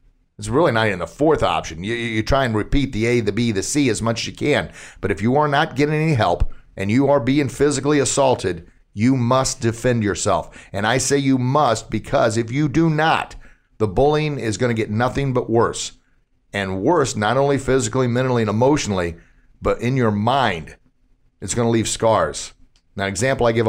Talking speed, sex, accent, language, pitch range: 205 wpm, male, American, English, 100-130 Hz